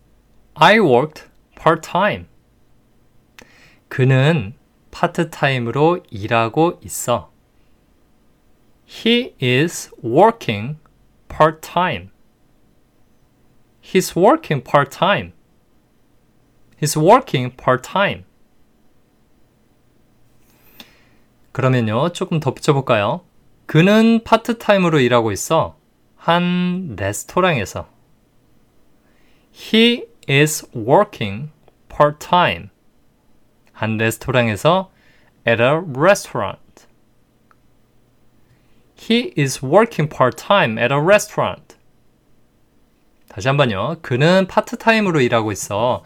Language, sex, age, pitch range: Korean, male, 20-39, 120-175 Hz